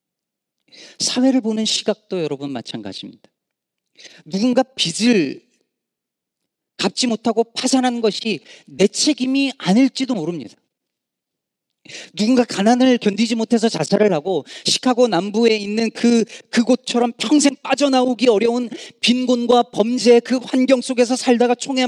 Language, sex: Korean, male